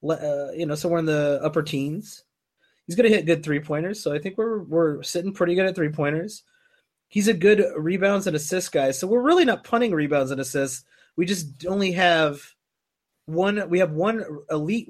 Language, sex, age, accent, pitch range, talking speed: English, male, 30-49, American, 140-185 Hz, 195 wpm